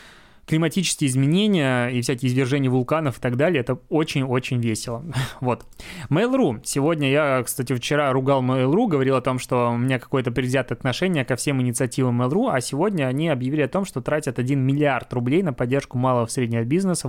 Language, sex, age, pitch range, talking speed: Russian, male, 20-39, 125-155 Hz, 175 wpm